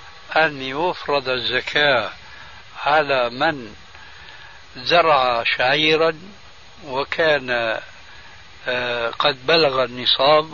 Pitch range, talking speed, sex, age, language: 130-170 Hz, 65 wpm, male, 60-79, Arabic